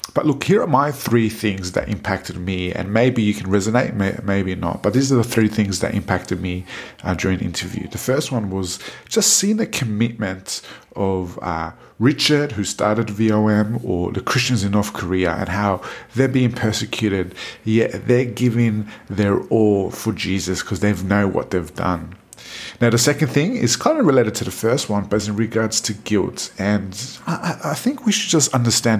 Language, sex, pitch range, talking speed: English, male, 95-120 Hz, 190 wpm